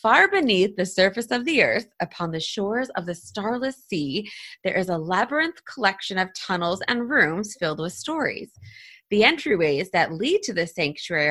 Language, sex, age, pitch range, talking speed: English, female, 30-49, 170-235 Hz, 175 wpm